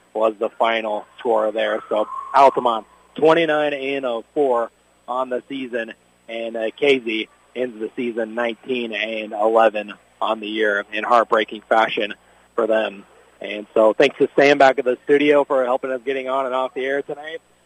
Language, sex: English, male